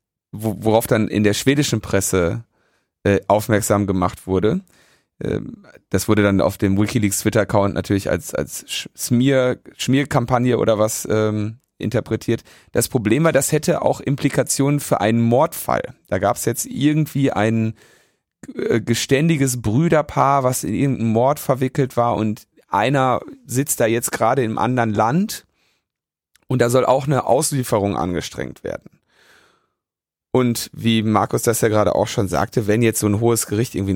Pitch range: 105-130 Hz